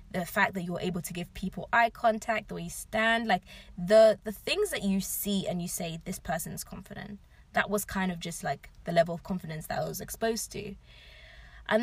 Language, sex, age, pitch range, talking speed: English, female, 20-39, 175-205 Hz, 220 wpm